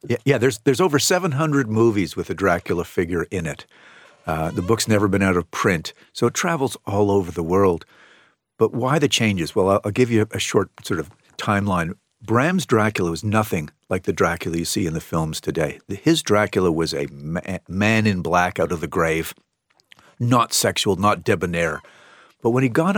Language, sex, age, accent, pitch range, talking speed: English, male, 50-69, American, 95-120 Hz, 195 wpm